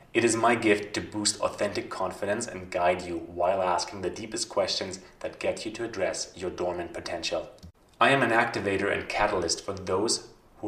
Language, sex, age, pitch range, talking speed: English, male, 30-49, 95-110 Hz, 185 wpm